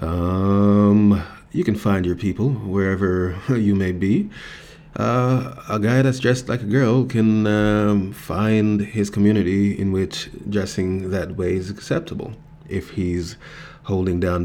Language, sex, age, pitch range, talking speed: English, male, 30-49, 95-110 Hz, 140 wpm